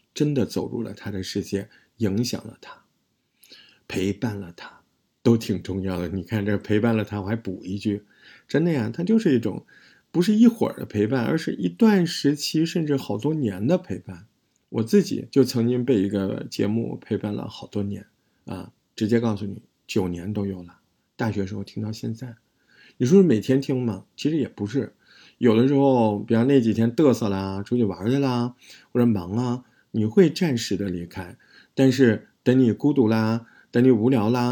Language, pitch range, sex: Chinese, 100-135 Hz, male